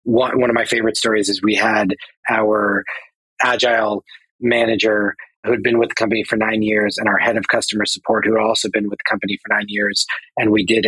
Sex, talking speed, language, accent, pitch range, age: male, 215 wpm, English, American, 105-120 Hz, 30-49